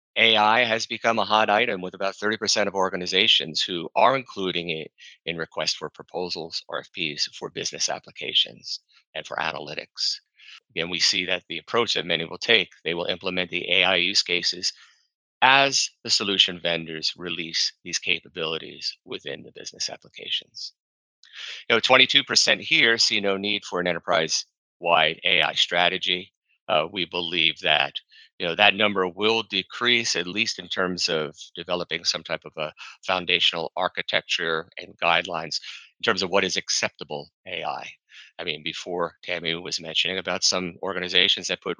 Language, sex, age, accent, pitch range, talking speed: English, male, 30-49, American, 95-115 Hz, 155 wpm